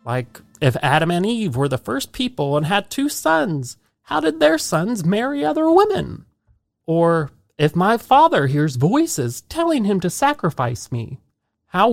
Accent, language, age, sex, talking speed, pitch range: American, English, 30-49, male, 160 wpm, 125-195 Hz